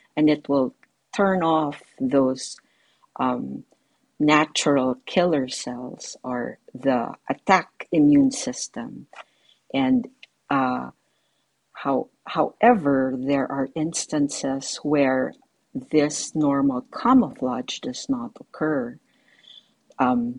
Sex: female